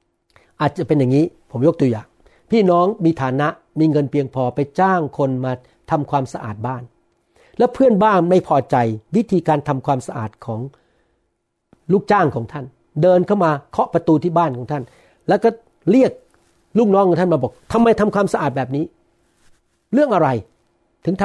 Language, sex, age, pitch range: Thai, male, 60-79, 130-180 Hz